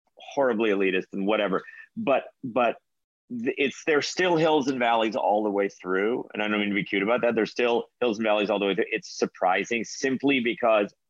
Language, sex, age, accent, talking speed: English, male, 50-69, American, 205 wpm